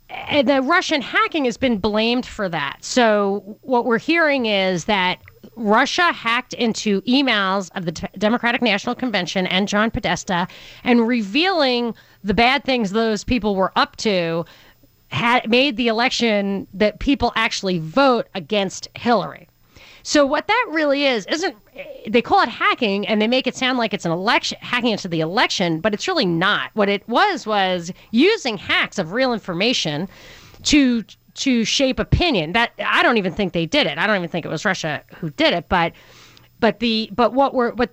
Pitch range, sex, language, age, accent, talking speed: 200-260 Hz, female, English, 30-49, American, 175 wpm